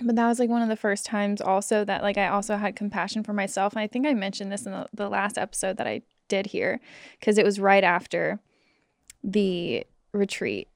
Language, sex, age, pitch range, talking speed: English, female, 20-39, 195-230 Hz, 225 wpm